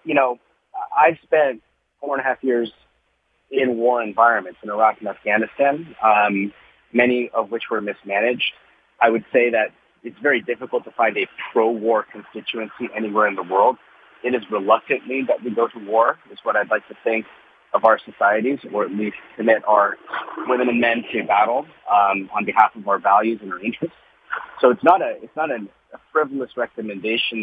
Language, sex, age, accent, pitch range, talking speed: English, male, 30-49, American, 100-125 Hz, 180 wpm